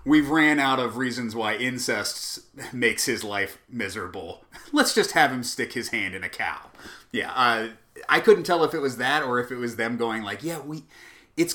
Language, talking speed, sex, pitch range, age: English, 210 wpm, male, 105-155 Hz, 30-49